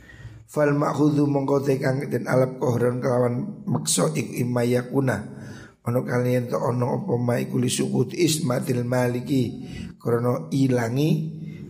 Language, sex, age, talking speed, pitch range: Indonesian, male, 60-79, 125 wpm, 120-145 Hz